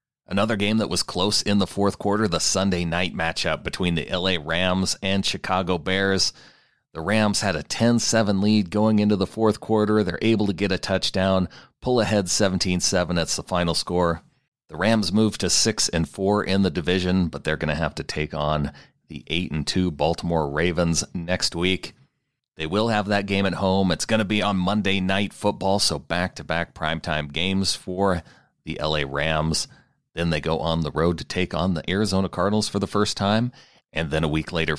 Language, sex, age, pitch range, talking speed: English, male, 40-59, 90-105 Hz, 190 wpm